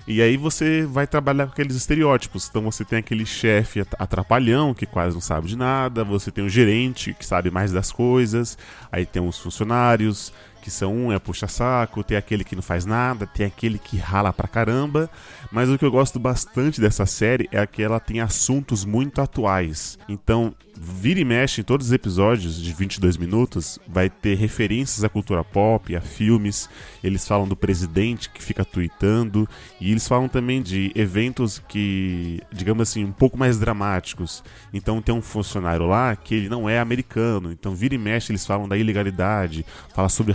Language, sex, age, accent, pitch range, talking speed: Portuguese, male, 20-39, Brazilian, 95-120 Hz, 185 wpm